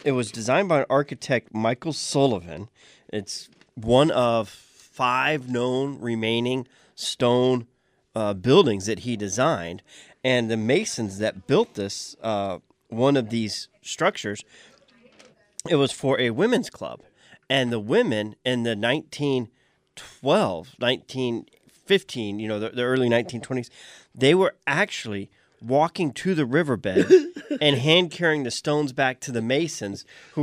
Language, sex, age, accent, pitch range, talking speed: English, male, 30-49, American, 110-140 Hz, 130 wpm